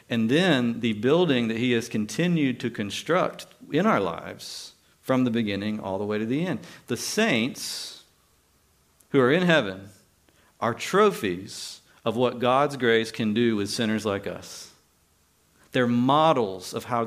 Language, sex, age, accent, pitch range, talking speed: English, male, 50-69, American, 100-125 Hz, 155 wpm